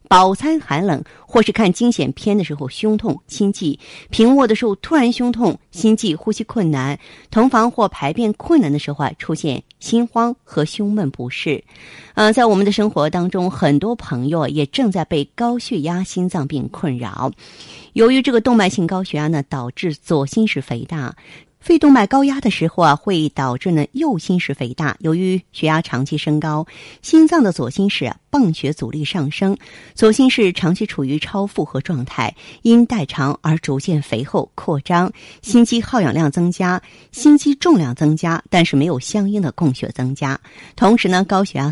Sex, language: female, Chinese